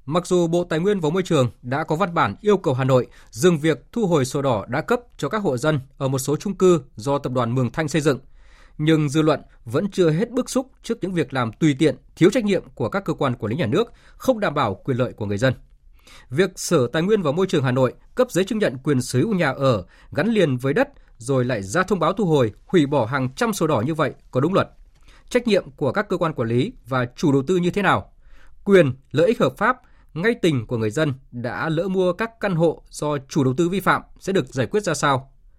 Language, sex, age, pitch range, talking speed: Vietnamese, male, 20-39, 130-180 Hz, 265 wpm